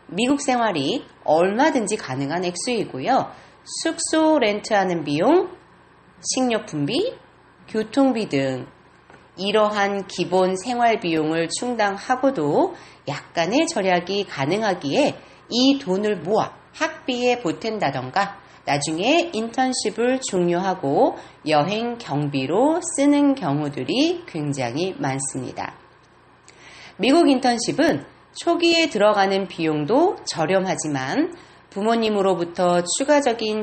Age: 40-59